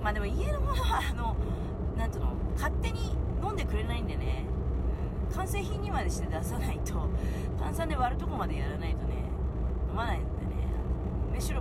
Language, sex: Japanese, female